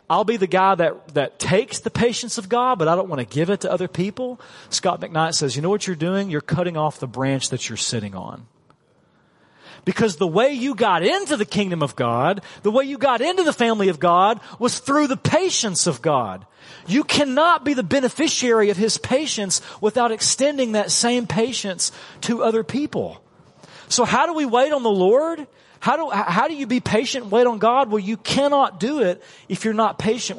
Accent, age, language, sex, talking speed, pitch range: American, 40-59, English, male, 210 wpm, 155-230 Hz